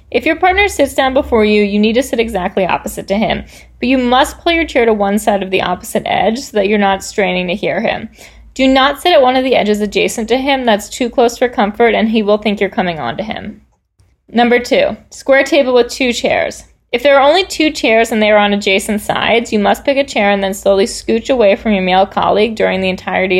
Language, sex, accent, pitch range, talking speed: English, female, American, 200-265 Hz, 250 wpm